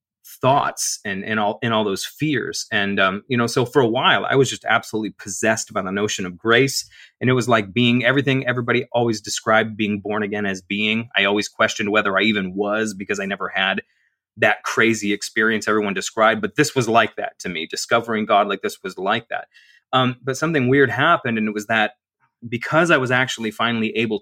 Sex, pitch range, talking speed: male, 105-125 Hz, 210 wpm